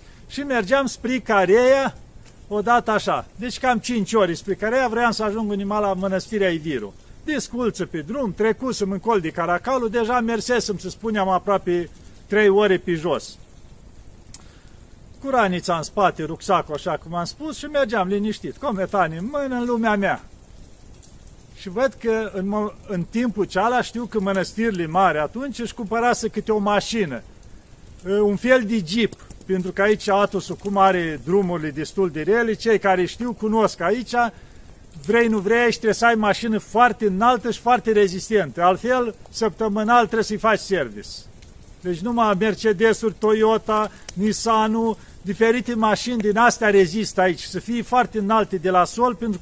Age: 50-69